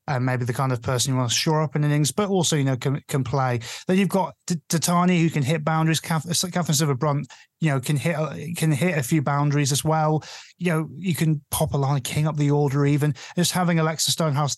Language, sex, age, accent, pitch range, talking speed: English, male, 20-39, British, 140-175 Hz, 245 wpm